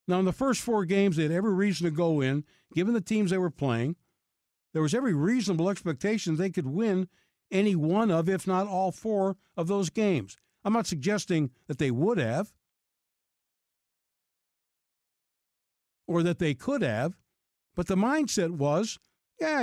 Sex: male